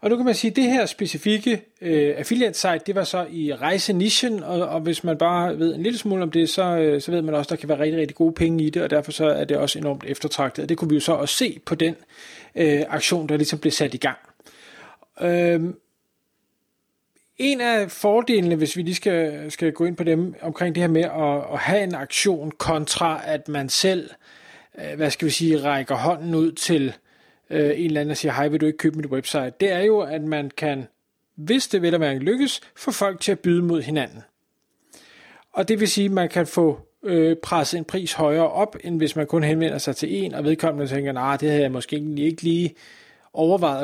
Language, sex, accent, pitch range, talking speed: Danish, male, native, 150-190 Hz, 230 wpm